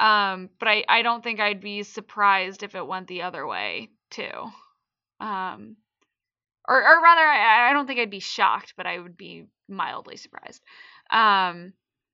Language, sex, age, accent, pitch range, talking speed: English, female, 10-29, American, 200-275 Hz, 170 wpm